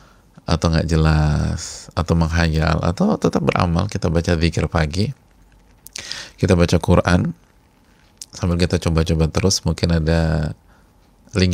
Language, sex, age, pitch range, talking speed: Indonesian, male, 30-49, 85-100 Hz, 115 wpm